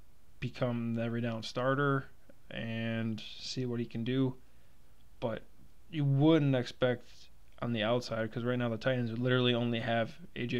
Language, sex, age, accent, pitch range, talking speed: English, male, 20-39, American, 115-125 Hz, 145 wpm